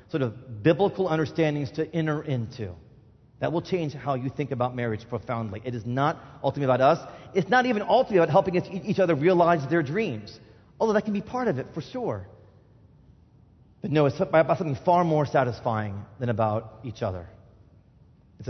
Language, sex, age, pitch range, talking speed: English, male, 30-49, 110-140 Hz, 180 wpm